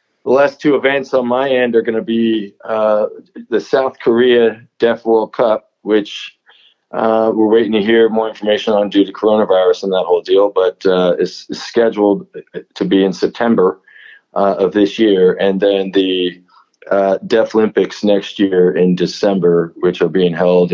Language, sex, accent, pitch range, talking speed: English, male, American, 90-115 Hz, 170 wpm